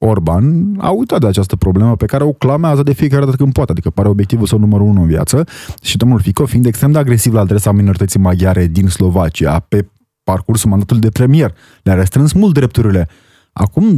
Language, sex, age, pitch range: Romanian, male, 20-39, 100-140 Hz